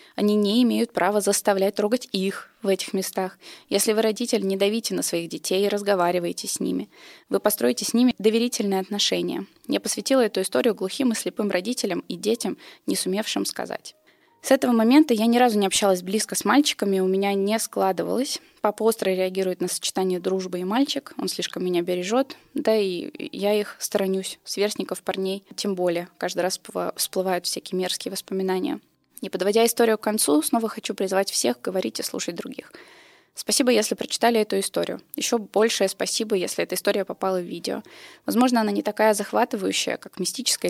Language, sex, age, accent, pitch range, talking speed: Russian, female, 20-39, native, 185-230 Hz, 170 wpm